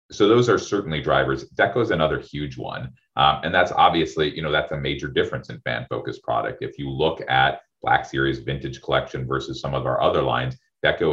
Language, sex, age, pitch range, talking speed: English, male, 30-49, 65-80 Hz, 205 wpm